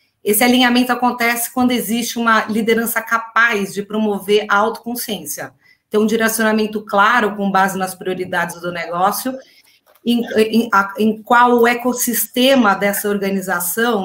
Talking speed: 125 wpm